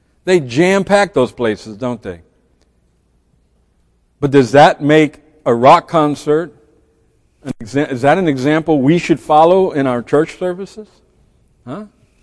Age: 60-79